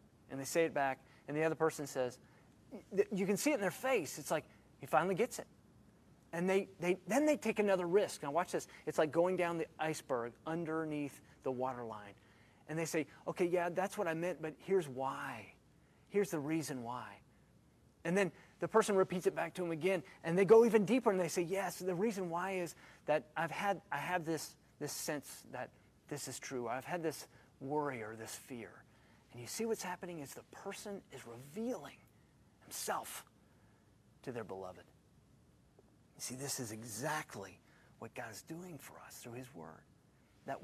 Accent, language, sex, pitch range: American, English, male, 130-185 Hz